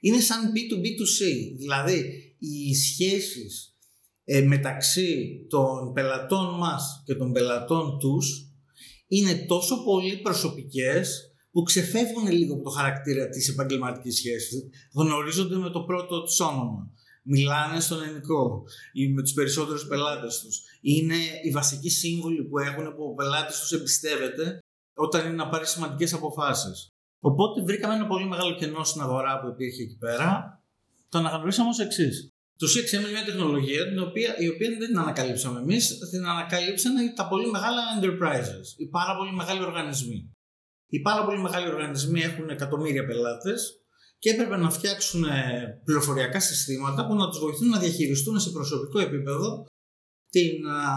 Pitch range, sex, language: 135-185 Hz, male, Greek